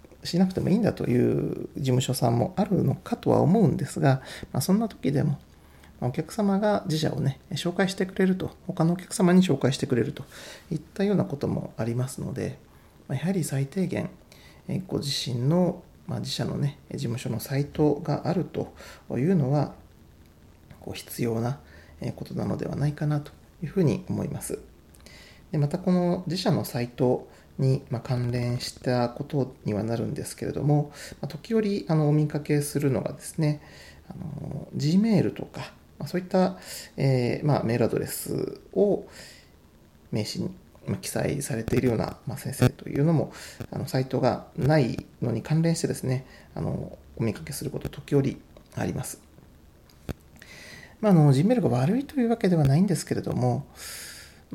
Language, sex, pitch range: Japanese, male, 125-170 Hz